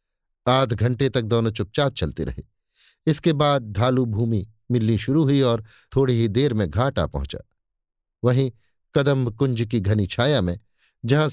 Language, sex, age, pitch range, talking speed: Hindi, male, 50-69, 110-140 Hz, 155 wpm